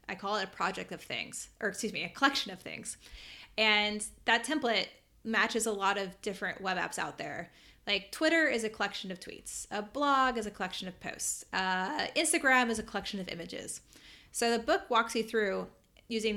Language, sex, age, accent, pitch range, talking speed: English, female, 20-39, American, 195-240 Hz, 200 wpm